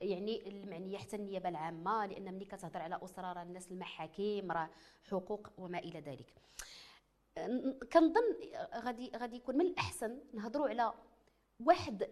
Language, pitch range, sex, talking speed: French, 180-270 Hz, female, 130 wpm